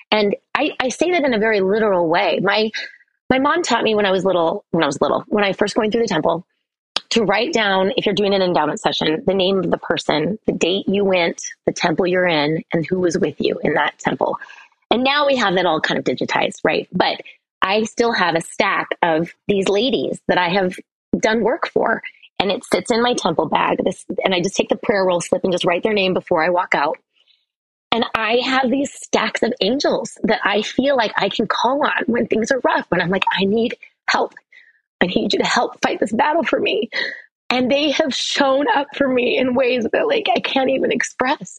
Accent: American